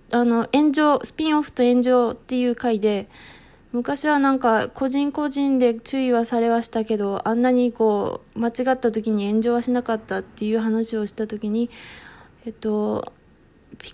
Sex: female